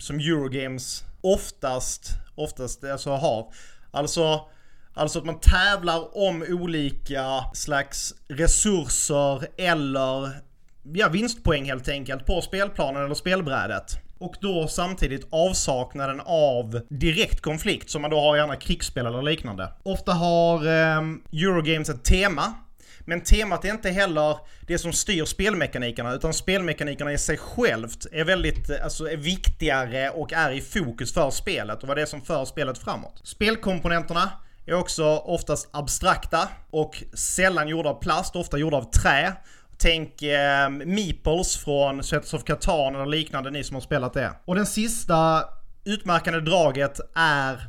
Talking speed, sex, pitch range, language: 140 wpm, male, 135-170 Hz, Swedish